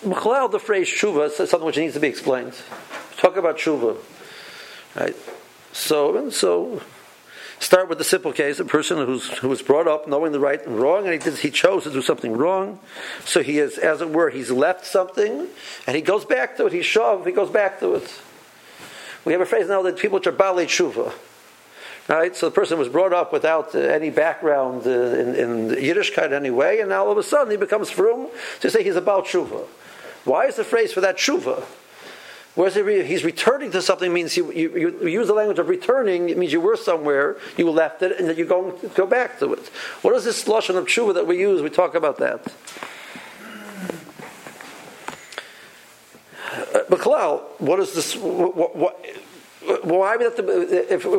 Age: 50-69